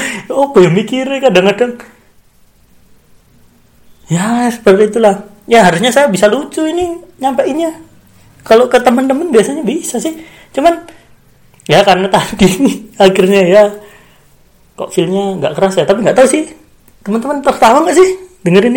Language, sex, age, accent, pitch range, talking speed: Indonesian, male, 30-49, native, 180-240 Hz, 125 wpm